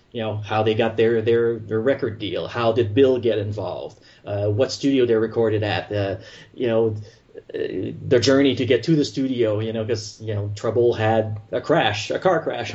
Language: English